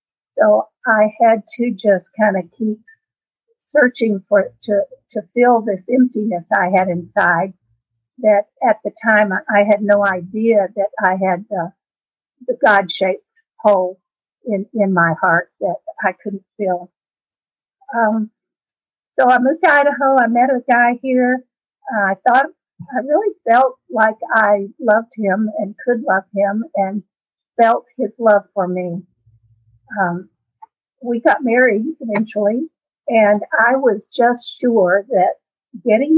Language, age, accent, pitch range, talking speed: English, 50-69, American, 190-235 Hz, 140 wpm